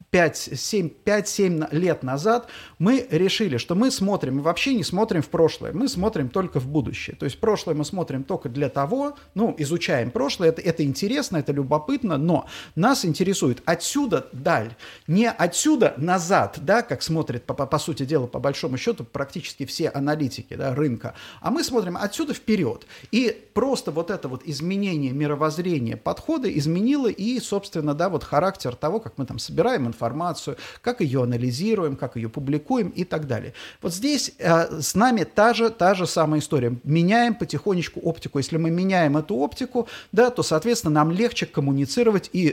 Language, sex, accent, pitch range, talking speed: Russian, male, native, 145-210 Hz, 165 wpm